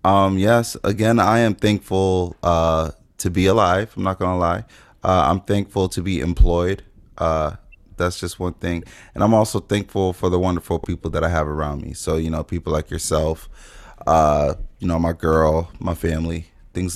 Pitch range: 85-110 Hz